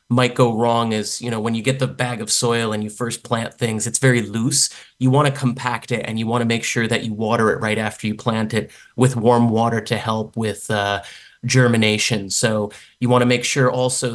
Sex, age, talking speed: male, 30-49, 240 wpm